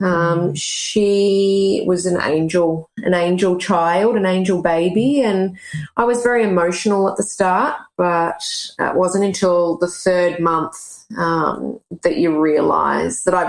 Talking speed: 140 wpm